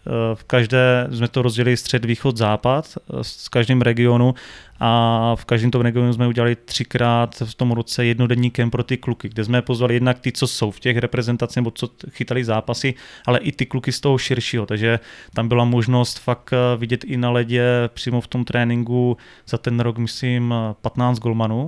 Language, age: Czech, 20-39